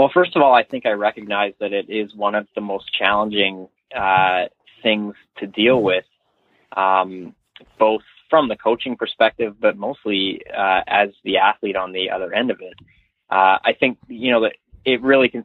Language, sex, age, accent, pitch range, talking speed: English, male, 20-39, American, 100-110 Hz, 185 wpm